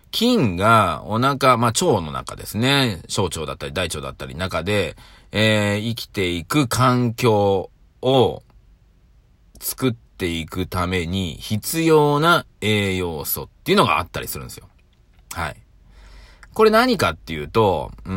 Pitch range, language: 90-125 Hz, Japanese